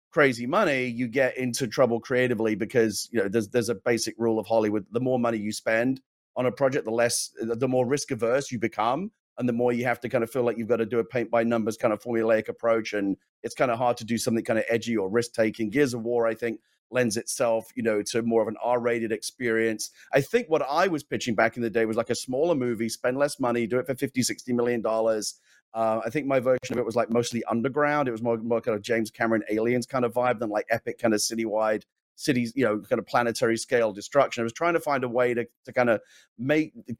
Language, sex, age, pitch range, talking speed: English, male, 30-49, 110-125 Hz, 255 wpm